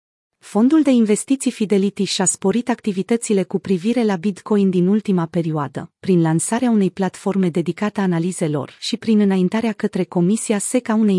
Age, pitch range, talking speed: 30-49, 180-220 Hz, 155 wpm